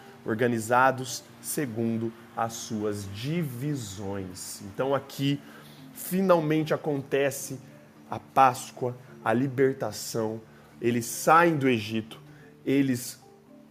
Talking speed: 80 wpm